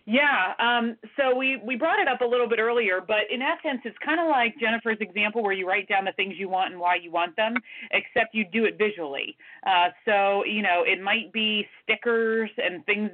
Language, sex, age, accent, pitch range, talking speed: English, female, 30-49, American, 185-230 Hz, 225 wpm